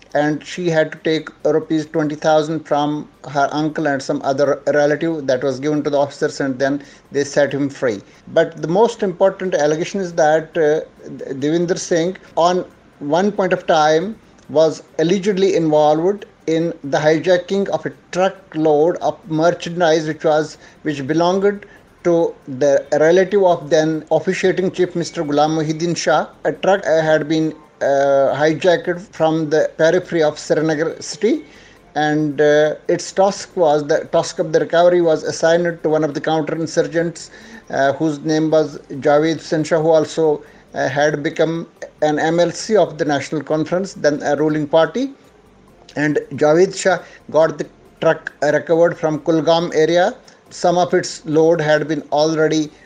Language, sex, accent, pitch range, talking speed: Hindi, male, native, 150-175 Hz, 155 wpm